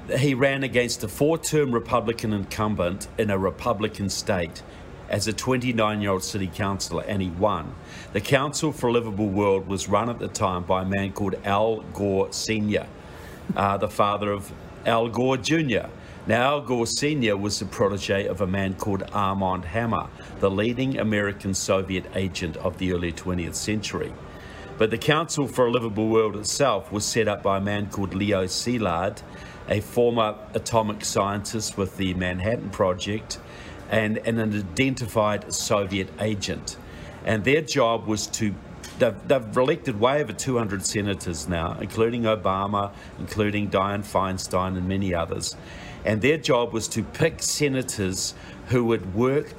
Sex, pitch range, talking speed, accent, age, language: male, 95-115 Hz, 160 wpm, Australian, 50-69, English